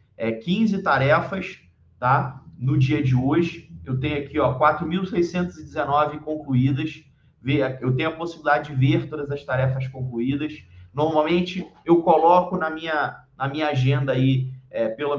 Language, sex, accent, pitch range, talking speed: Portuguese, male, Brazilian, 135-165 Hz, 125 wpm